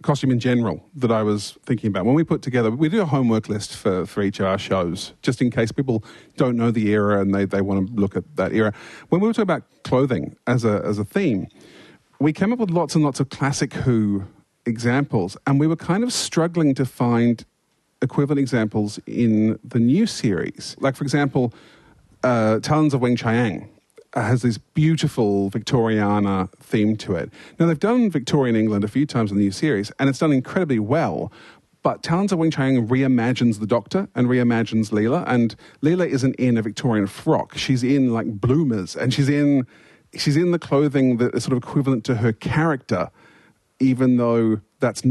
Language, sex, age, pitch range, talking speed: English, male, 40-59, 110-145 Hz, 195 wpm